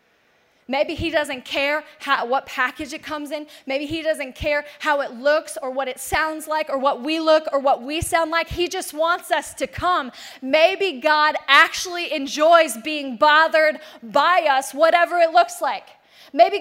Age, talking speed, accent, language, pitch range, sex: 20-39, 180 wpm, American, English, 310-375 Hz, female